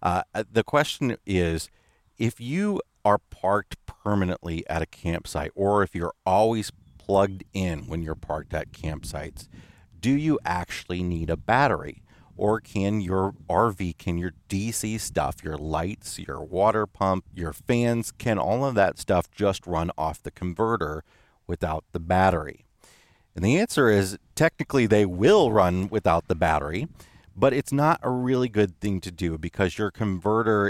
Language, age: English, 40-59